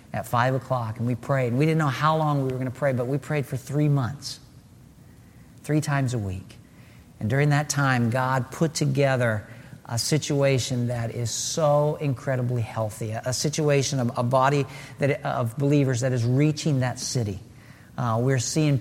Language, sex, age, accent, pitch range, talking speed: English, male, 50-69, American, 125-150 Hz, 180 wpm